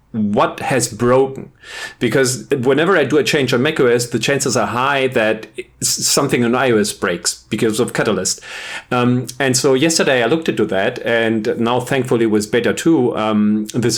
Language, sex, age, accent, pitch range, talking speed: English, male, 40-59, German, 115-140 Hz, 170 wpm